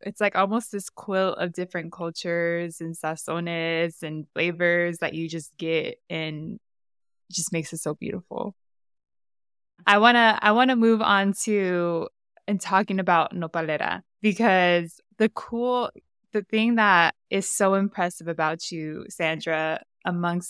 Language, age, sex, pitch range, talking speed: English, 20-39, female, 160-190 Hz, 130 wpm